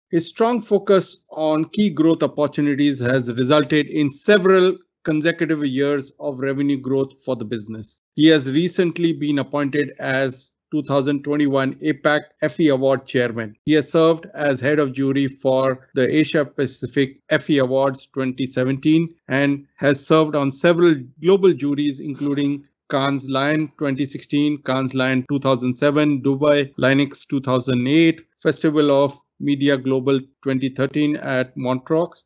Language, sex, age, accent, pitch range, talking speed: English, male, 50-69, Indian, 130-155 Hz, 125 wpm